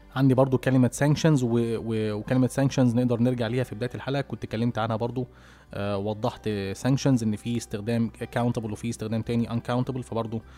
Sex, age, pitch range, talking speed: male, 20-39, 115-130 Hz, 155 wpm